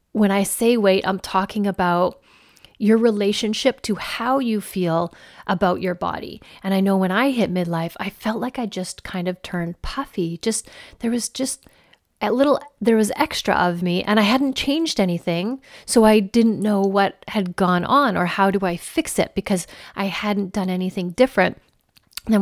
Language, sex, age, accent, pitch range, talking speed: English, female, 30-49, American, 185-230 Hz, 185 wpm